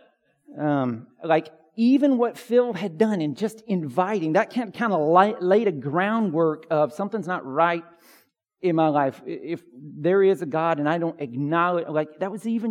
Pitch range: 160-225 Hz